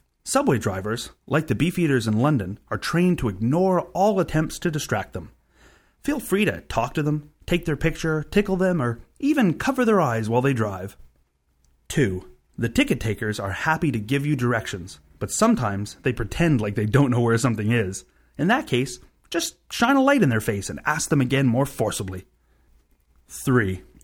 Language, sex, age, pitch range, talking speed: English, male, 30-49, 100-160 Hz, 185 wpm